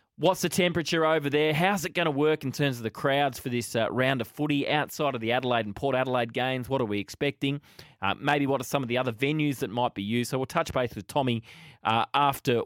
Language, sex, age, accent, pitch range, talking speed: English, male, 20-39, Australian, 120-155 Hz, 255 wpm